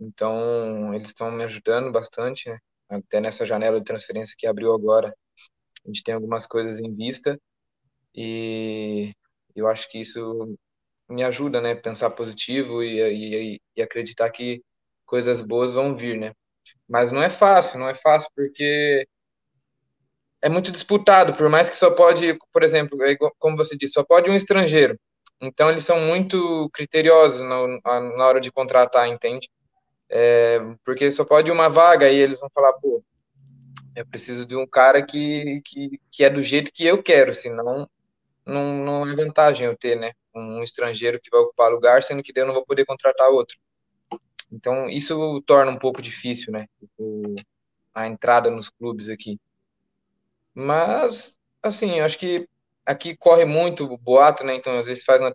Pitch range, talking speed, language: 115-150 Hz, 165 wpm, Portuguese